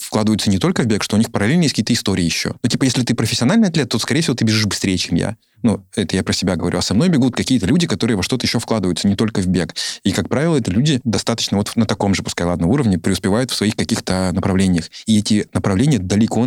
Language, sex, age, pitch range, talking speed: Russian, male, 20-39, 90-105 Hz, 255 wpm